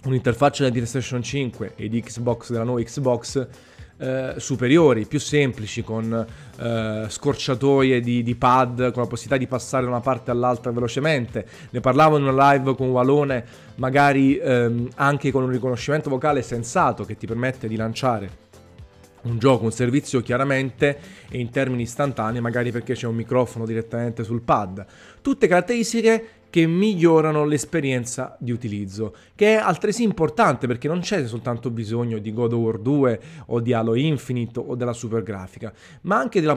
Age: 30-49